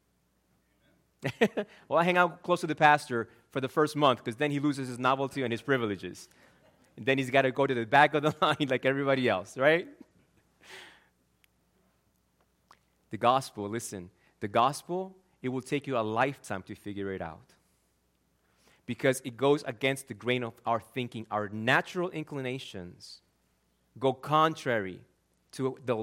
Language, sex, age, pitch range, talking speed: English, male, 30-49, 100-150 Hz, 155 wpm